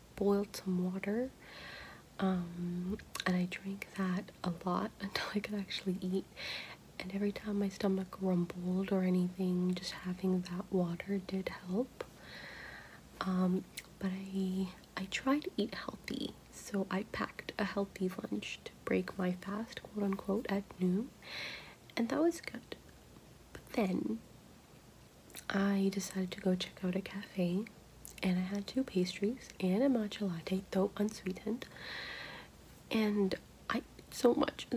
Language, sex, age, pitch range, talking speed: English, female, 30-49, 185-210 Hz, 140 wpm